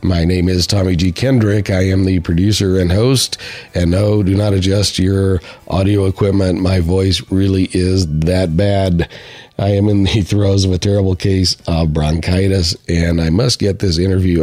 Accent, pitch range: American, 90-100 Hz